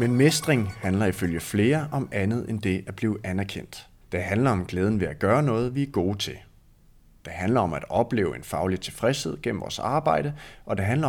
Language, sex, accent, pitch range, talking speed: Danish, male, native, 95-130 Hz, 205 wpm